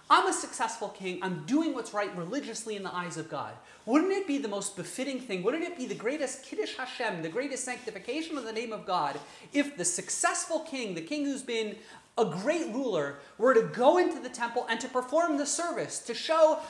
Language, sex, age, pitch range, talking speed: English, male, 30-49, 195-285 Hz, 215 wpm